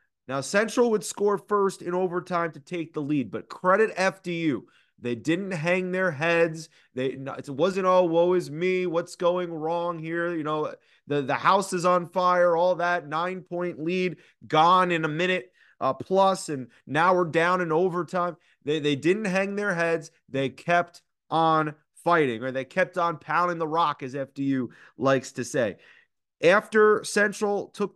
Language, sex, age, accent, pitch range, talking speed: English, male, 30-49, American, 155-190 Hz, 170 wpm